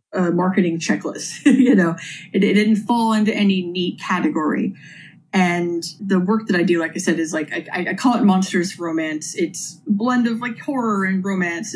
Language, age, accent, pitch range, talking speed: English, 30-49, American, 170-215 Hz, 185 wpm